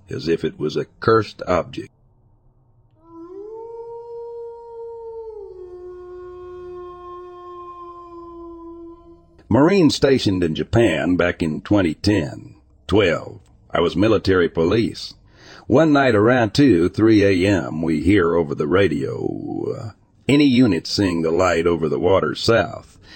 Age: 60-79